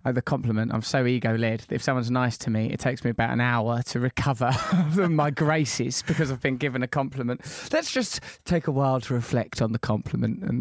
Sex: male